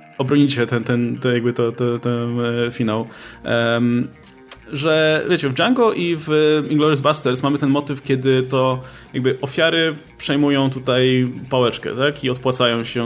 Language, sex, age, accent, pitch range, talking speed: Polish, male, 20-39, native, 130-175 Hz, 135 wpm